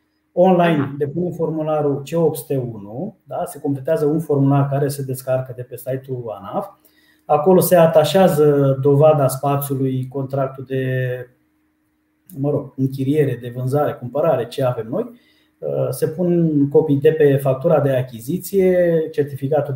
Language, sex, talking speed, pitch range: Romanian, male, 115 wpm, 135-180 Hz